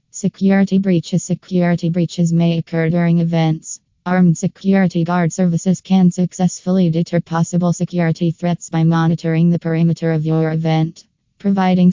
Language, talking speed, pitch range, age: English, 130 wpm, 165-175 Hz, 20-39